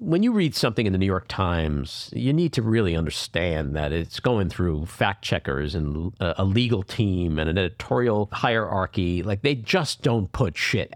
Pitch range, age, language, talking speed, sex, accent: 85-115 Hz, 50-69, English, 185 wpm, male, American